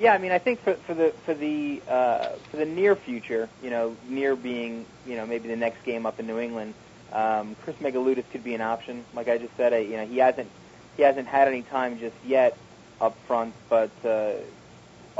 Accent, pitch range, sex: American, 115-130 Hz, male